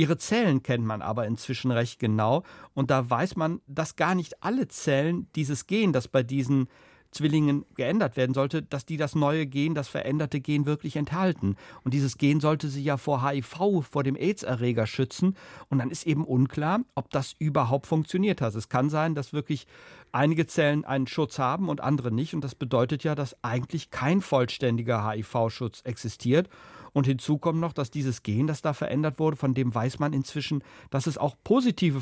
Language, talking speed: German, 190 wpm